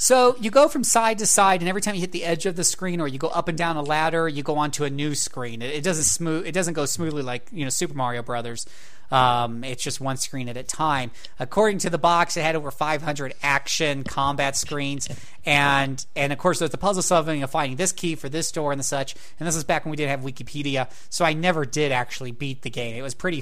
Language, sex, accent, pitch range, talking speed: English, male, American, 140-190 Hz, 255 wpm